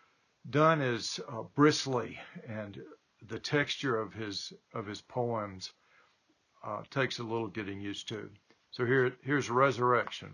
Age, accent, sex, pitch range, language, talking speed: 60-79, American, male, 115-145 Hz, English, 135 wpm